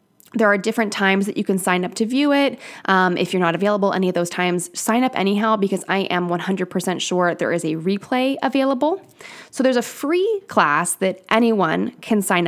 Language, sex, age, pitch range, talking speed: English, female, 20-39, 185-230 Hz, 205 wpm